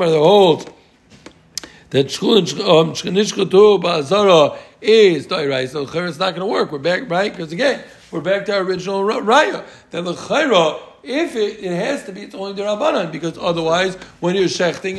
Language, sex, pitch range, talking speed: English, male, 165-200 Hz, 160 wpm